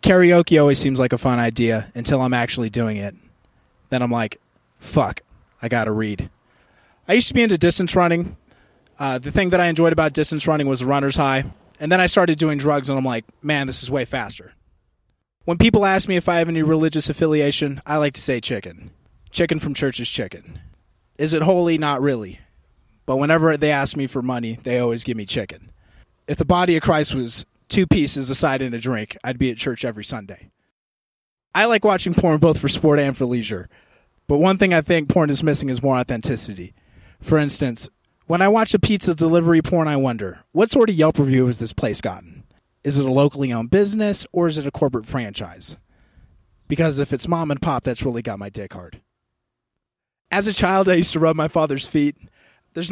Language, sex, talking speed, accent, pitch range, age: English, male, 210 wpm, American, 120-165 Hz, 20-39